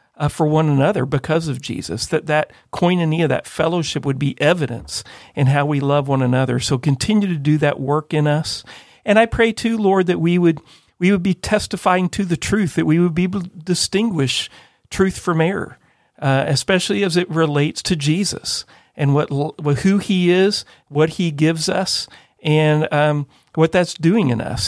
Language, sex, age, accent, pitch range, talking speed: English, male, 40-59, American, 150-180 Hz, 190 wpm